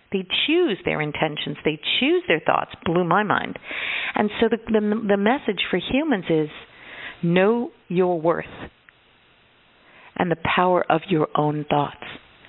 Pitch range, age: 145-185 Hz, 50-69